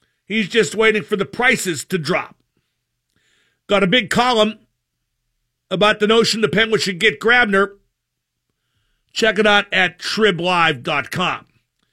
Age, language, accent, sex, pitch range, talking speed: 50-69, English, American, male, 185-230 Hz, 125 wpm